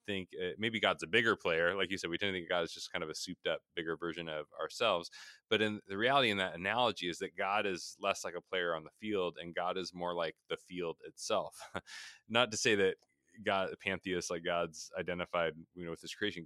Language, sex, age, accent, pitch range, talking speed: English, male, 20-39, American, 85-100 Hz, 240 wpm